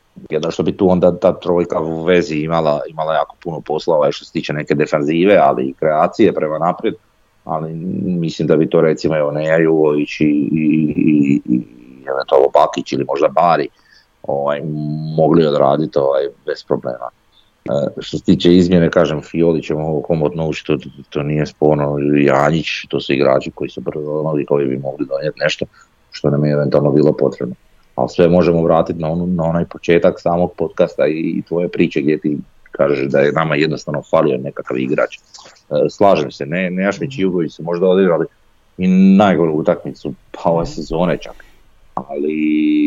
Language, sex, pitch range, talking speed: Croatian, male, 75-90 Hz, 180 wpm